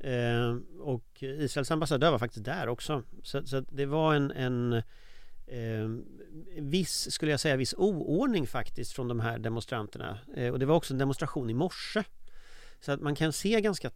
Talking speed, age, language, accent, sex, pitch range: 175 wpm, 40-59, Swedish, native, male, 120-150 Hz